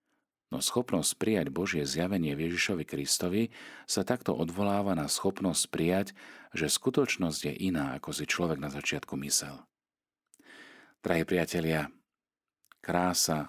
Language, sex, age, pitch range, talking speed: Slovak, male, 40-59, 75-90 Hz, 120 wpm